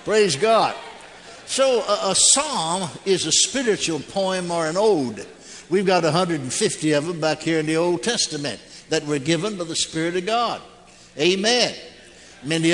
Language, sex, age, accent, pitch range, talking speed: English, male, 60-79, American, 155-185 Hz, 160 wpm